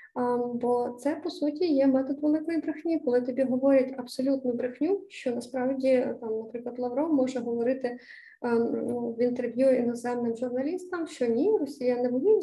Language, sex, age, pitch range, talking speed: Ukrainian, female, 20-39, 245-290 Hz, 140 wpm